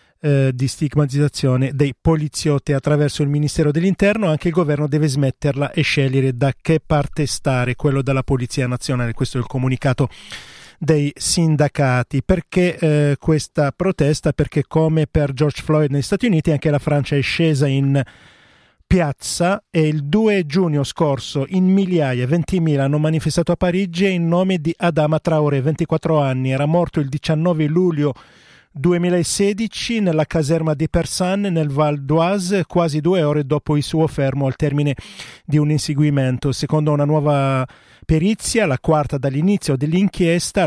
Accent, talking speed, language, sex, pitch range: native, 150 wpm, Italian, male, 140-165 Hz